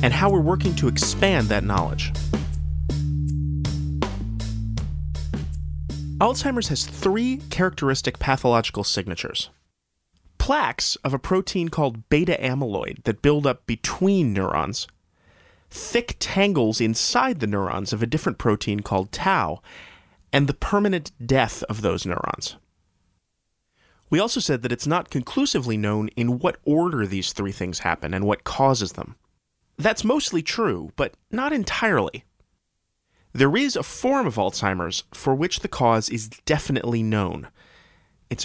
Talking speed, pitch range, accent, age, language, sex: 130 wpm, 95-145 Hz, American, 30-49, English, male